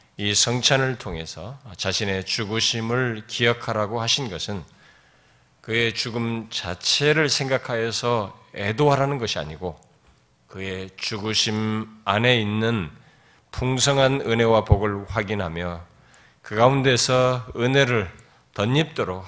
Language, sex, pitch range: Korean, male, 90-125 Hz